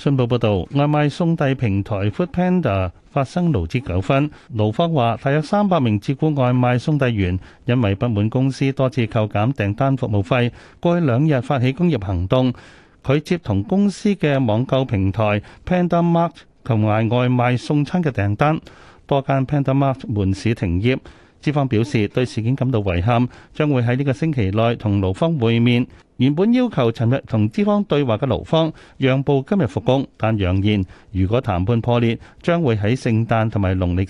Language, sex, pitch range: Chinese, male, 105-150 Hz